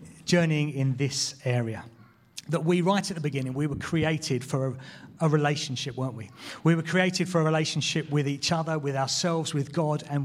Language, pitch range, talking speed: English, 130-160 Hz, 195 wpm